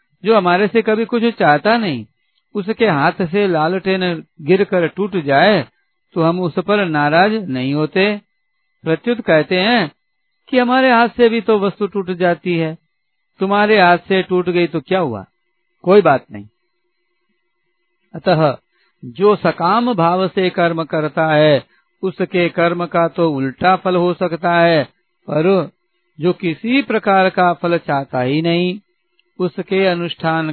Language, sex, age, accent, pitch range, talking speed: Hindi, male, 60-79, native, 155-205 Hz, 145 wpm